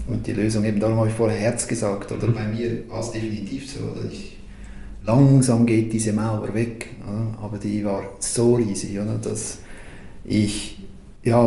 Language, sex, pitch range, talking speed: German, male, 105-120 Hz, 175 wpm